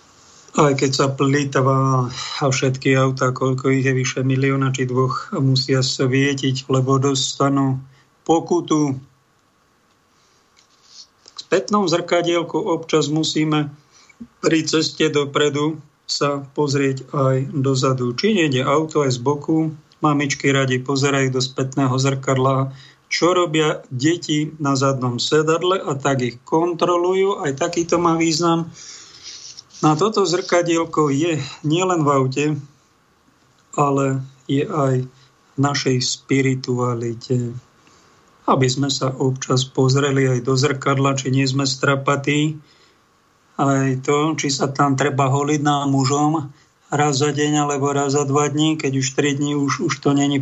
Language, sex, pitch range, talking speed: Slovak, male, 135-150 Hz, 125 wpm